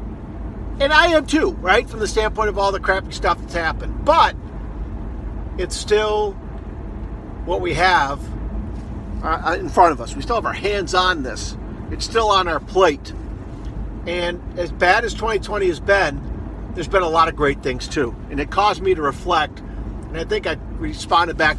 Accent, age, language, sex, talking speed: American, 50-69, English, male, 180 wpm